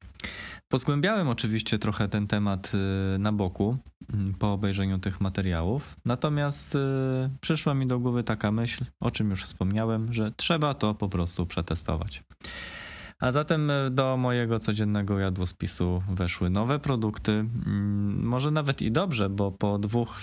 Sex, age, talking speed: male, 20-39, 130 wpm